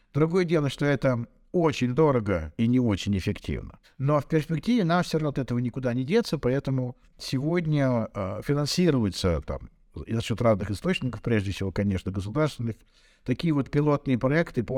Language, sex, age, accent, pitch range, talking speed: Russian, male, 50-69, native, 115-145 Hz, 155 wpm